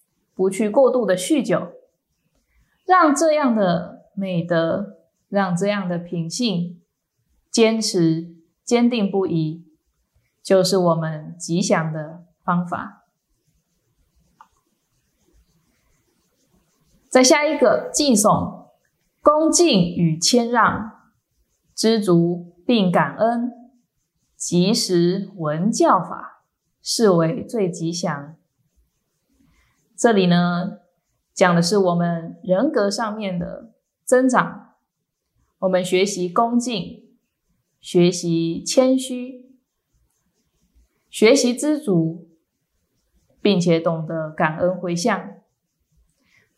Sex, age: female, 20-39